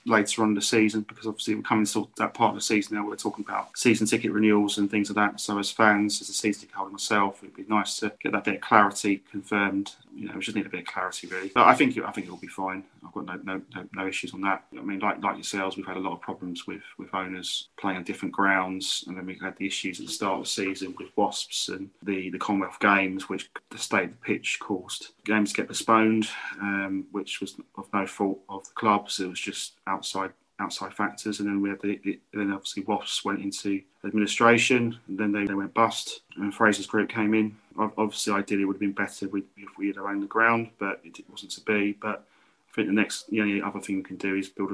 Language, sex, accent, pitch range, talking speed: English, male, British, 95-105 Hz, 260 wpm